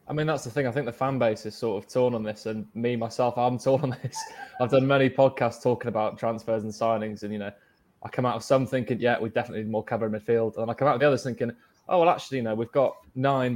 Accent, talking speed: British, 290 wpm